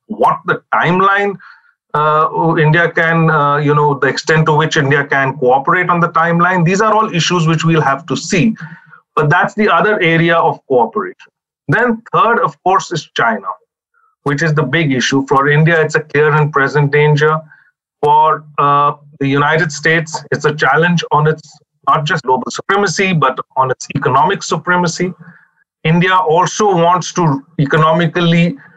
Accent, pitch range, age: Indian, 155-180 Hz, 30-49